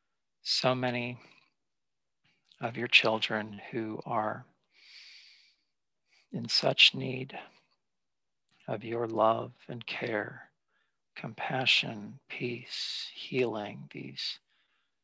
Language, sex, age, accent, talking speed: English, male, 50-69, American, 75 wpm